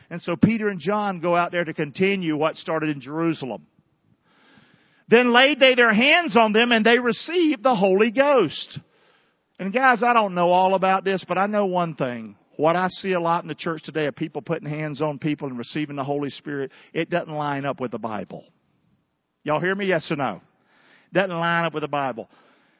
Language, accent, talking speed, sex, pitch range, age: English, American, 210 wpm, male, 150-195 Hz, 50-69